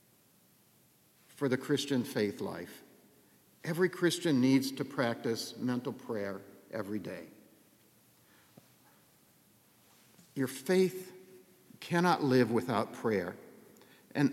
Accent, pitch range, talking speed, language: American, 120-155 Hz, 90 wpm, English